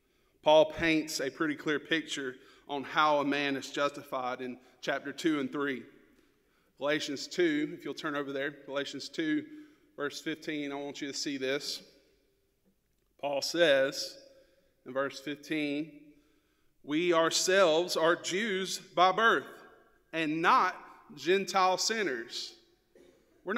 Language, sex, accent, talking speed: English, male, American, 125 wpm